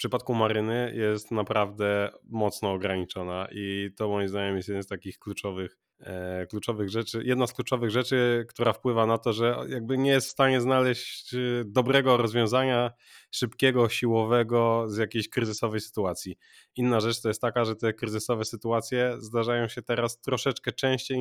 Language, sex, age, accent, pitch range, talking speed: Polish, male, 20-39, native, 110-120 Hz, 155 wpm